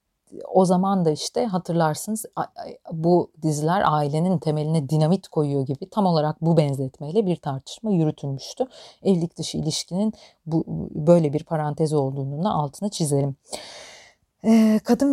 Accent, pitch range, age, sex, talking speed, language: native, 155-190 Hz, 40-59, female, 125 wpm, Turkish